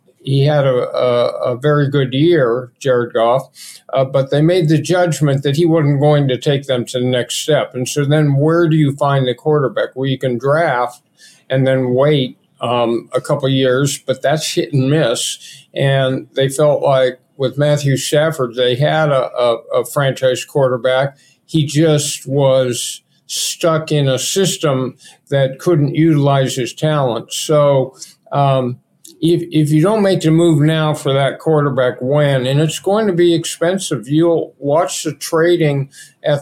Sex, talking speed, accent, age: male, 170 wpm, American, 50-69